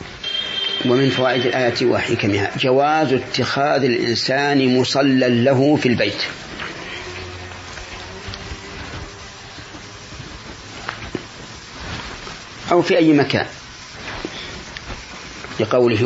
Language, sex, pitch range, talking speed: Arabic, male, 105-130 Hz, 60 wpm